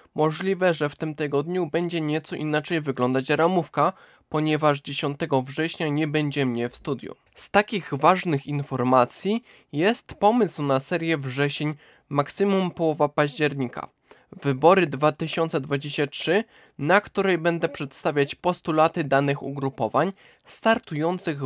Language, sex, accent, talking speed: Polish, male, native, 110 wpm